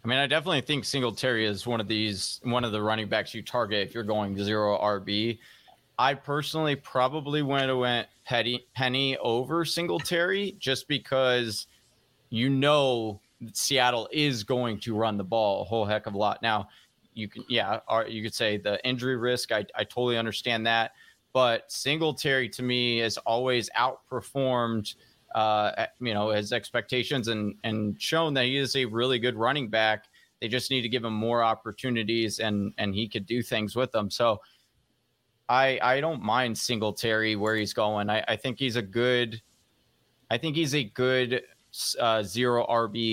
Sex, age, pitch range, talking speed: male, 30-49, 110-130 Hz, 175 wpm